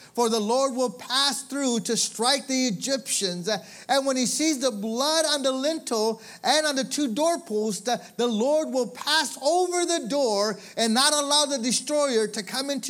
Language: English